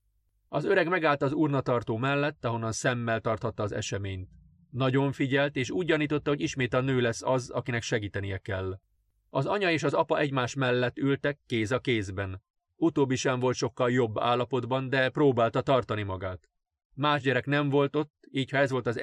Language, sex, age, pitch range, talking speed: Hungarian, male, 30-49, 110-140 Hz, 175 wpm